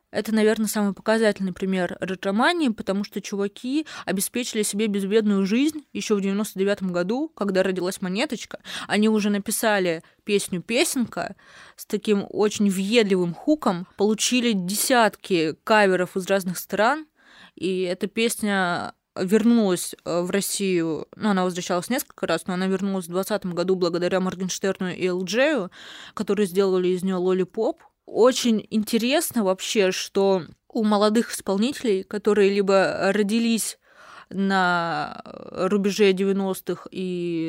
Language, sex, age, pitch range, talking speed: Russian, female, 20-39, 185-215 Hz, 125 wpm